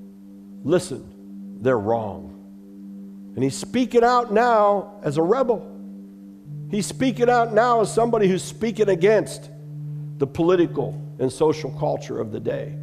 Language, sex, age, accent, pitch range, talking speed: English, male, 60-79, American, 135-200 Hz, 130 wpm